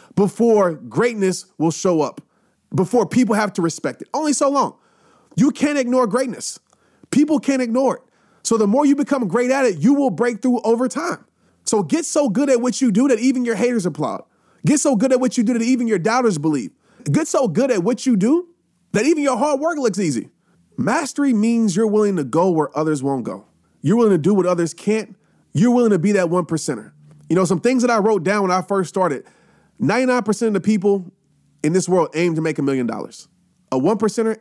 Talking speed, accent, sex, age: 225 wpm, American, male, 30-49